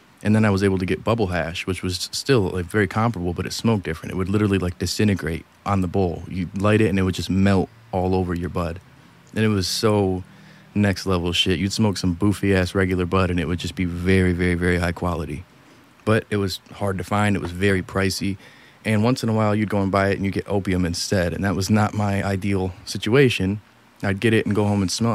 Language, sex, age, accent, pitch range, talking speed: English, male, 30-49, American, 90-110 Hz, 240 wpm